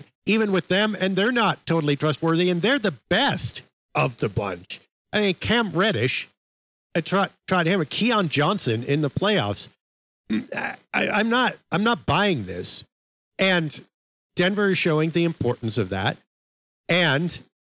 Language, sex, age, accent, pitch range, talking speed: English, male, 50-69, American, 115-170 Hz, 145 wpm